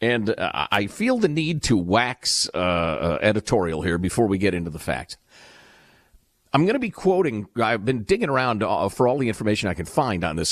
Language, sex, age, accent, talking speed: English, male, 50-69, American, 195 wpm